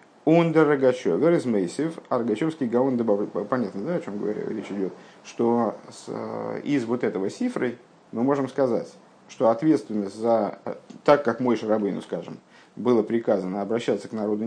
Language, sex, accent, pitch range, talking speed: Russian, male, native, 115-160 Hz, 115 wpm